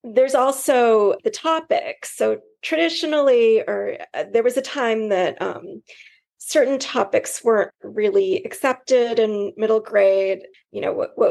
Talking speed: 135 wpm